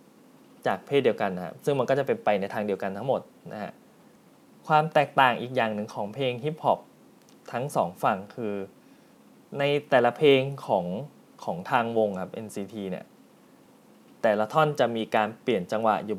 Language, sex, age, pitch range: Thai, male, 20-39, 105-140 Hz